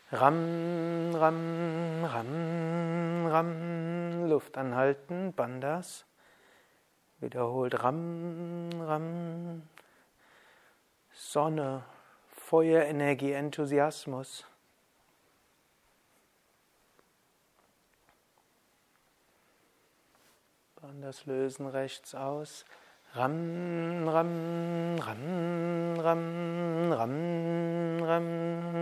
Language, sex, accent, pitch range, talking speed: German, male, German, 135-170 Hz, 50 wpm